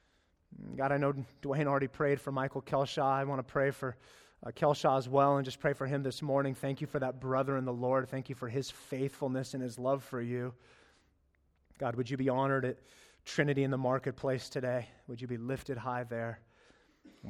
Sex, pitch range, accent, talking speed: male, 125-160 Hz, American, 210 wpm